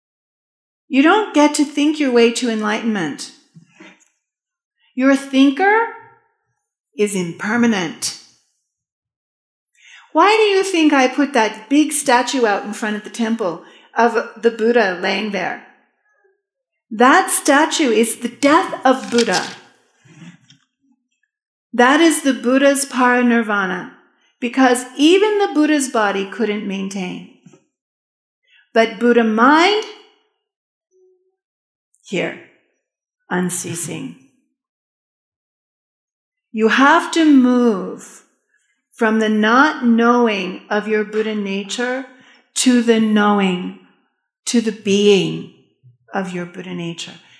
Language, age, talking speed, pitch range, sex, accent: English, 50-69, 100 wpm, 210-290 Hz, female, American